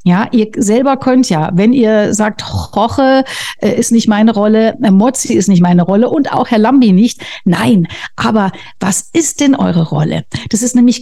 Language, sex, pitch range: German, female, 195-245 Hz